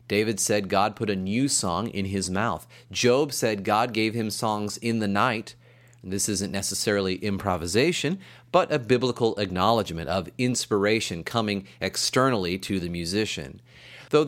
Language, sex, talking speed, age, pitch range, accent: English, male, 145 wpm, 30-49, 100-135 Hz, American